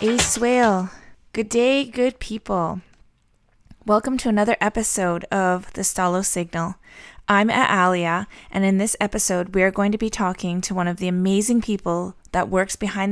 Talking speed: 160 wpm